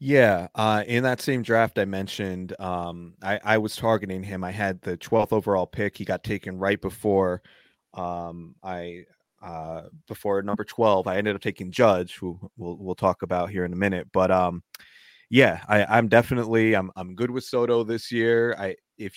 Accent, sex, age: American, male, 20-39